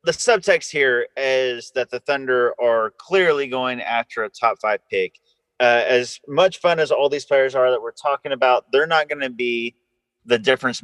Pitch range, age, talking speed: 120-155 Hz, 30-49, 195 wpm